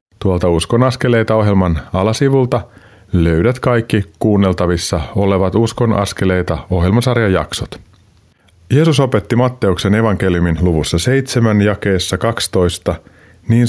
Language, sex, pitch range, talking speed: Finnish, male, 90-110 Hz, 90 wpm